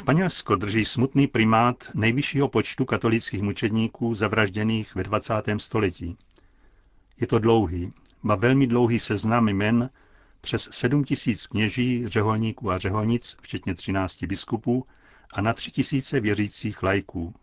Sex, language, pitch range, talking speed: male, Czech, 100-120 Hz, 115 wpm